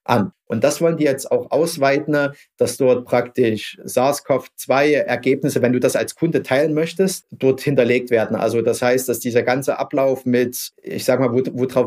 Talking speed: 175 wpm